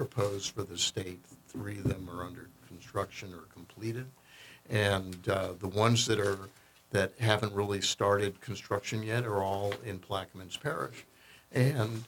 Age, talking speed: 60-79, 150 wpm